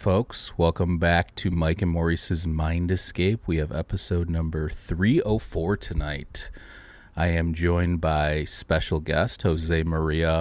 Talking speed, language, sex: 135 wpm, English, male